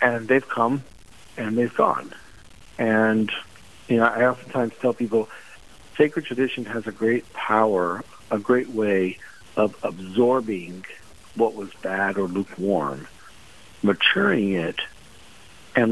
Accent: American